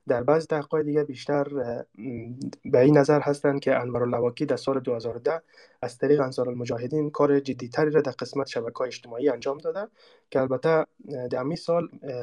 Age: 20-39